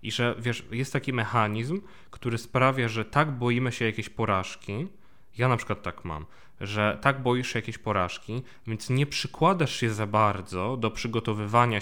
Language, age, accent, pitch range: Polish, 20-39, native, 100-125 Hz